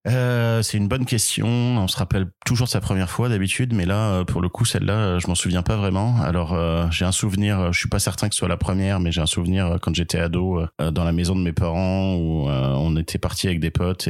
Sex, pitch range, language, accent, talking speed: male, 80-95 Hz, French, French, 255 wpm